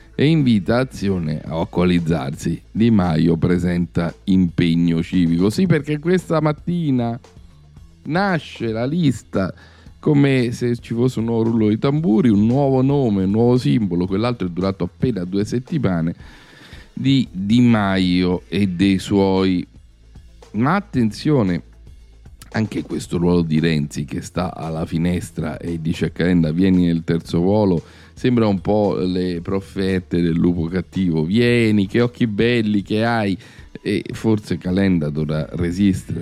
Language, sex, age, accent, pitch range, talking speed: Italian, male, 40-59, native, 85-120 Hz, 135 wpm